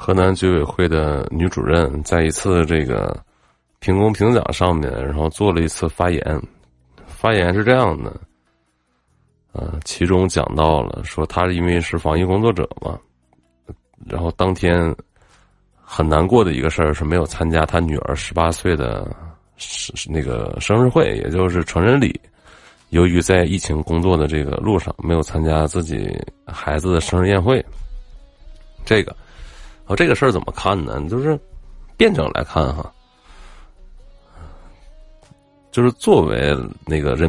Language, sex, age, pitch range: Chinese, male, 30-49, 75-95 Hz